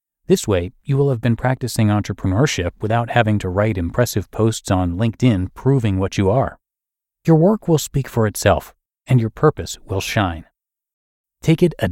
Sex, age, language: male, 30-49, English